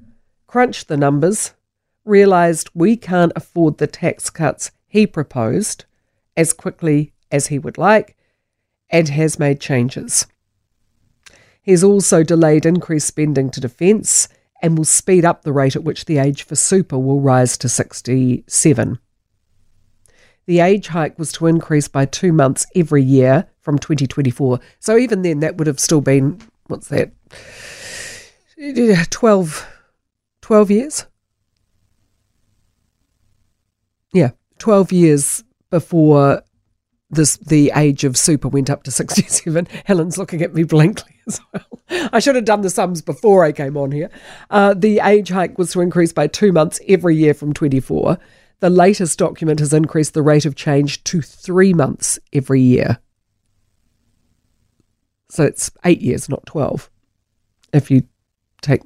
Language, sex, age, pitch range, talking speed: English, female, 50-69, 125-175 Hz, 140 wpm